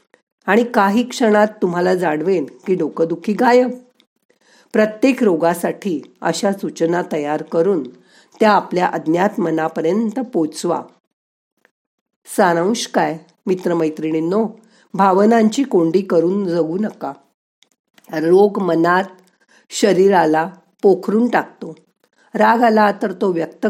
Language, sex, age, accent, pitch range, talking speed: Marathi, female, 50-69, native, 165-215 Hz, 85 wpm